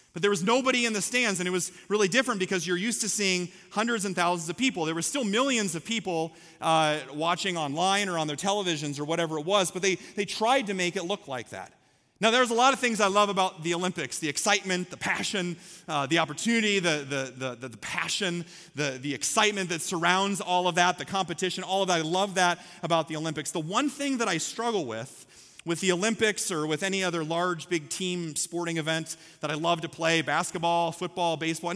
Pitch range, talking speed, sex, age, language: 155-200 Hz, 225 wpm, male, 30-49, English